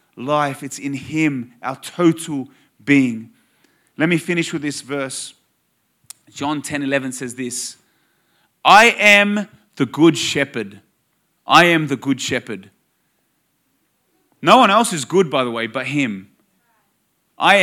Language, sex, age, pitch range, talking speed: English, male, 30-49, 135-180 Hz, 135 wpm